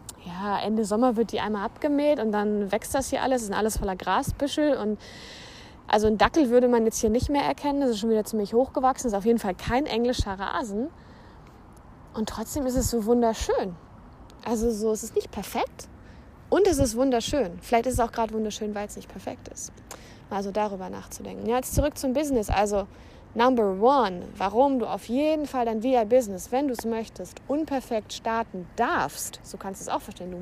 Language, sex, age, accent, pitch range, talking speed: German, female, 20-39, German, 210-265 Hz, 205 wpm